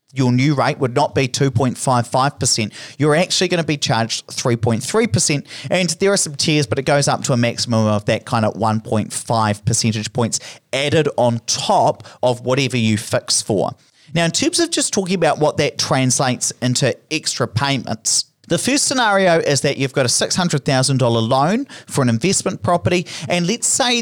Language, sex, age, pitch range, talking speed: English, male, 40-59, 120-170 Hz, 175 wpm